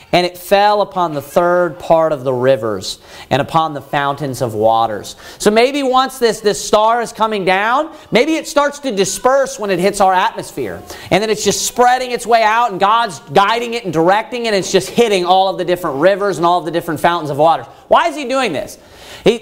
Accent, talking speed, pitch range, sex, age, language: American, 225 wpm, 180-255 Hz, male, 40-59, English